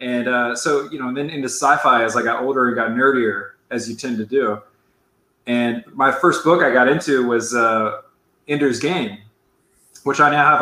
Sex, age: male, 20-39